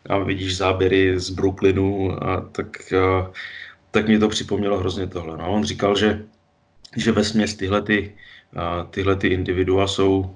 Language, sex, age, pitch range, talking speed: English, male, 20-39, 90-100 Hz, 155 wpm